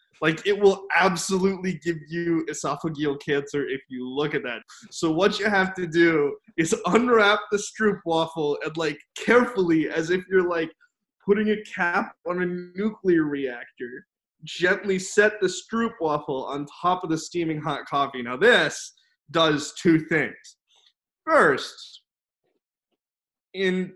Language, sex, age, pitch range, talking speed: English, male, 20-39, 155-200 Hz, 145 wpm